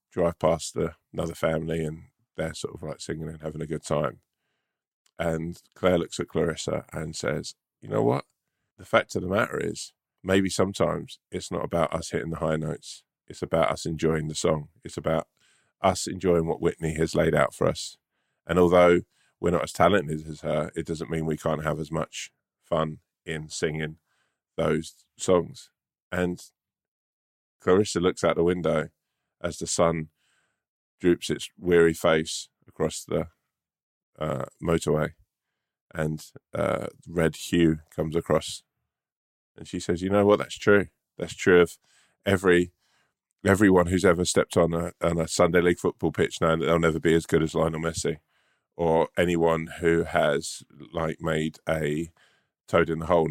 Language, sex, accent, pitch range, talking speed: English, male, British, 80-90 Hz, 165 wpm